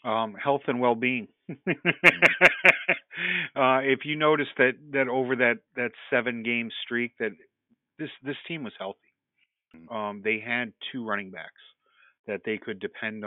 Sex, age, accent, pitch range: male, 50-69, American, 115-130 Hz